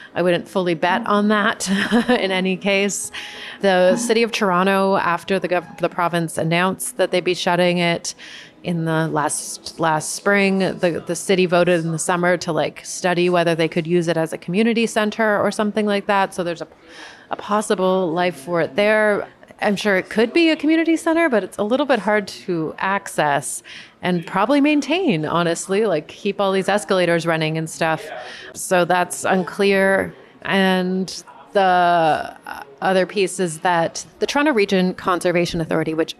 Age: 30-49